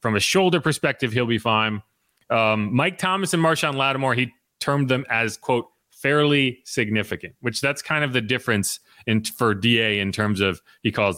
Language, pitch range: English, 110-145 Hz